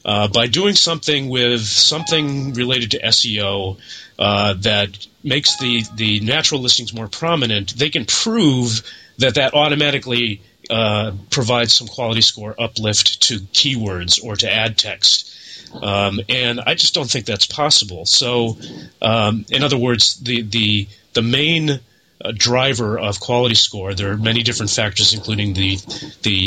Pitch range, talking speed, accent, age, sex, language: 105-125 Hz, 150 wpm, American, 30-49, male, English